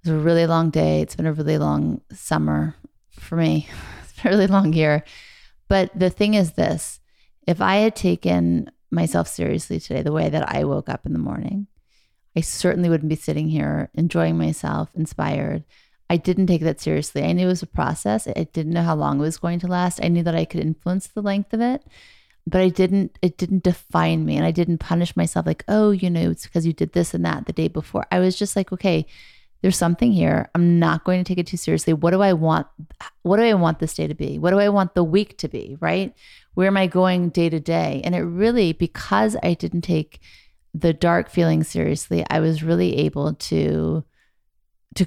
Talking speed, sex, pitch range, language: 235 wpm, female, 155-185 Hz, English